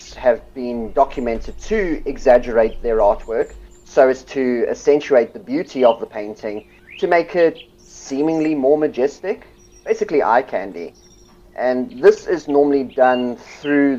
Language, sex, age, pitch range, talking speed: English, male, 30-49, 110-145 Hz, 135 wpm